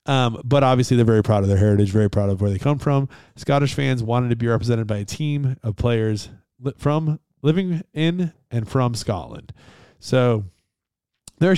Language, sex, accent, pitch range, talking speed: English, male, American, 105-130 Hz, 180 wpm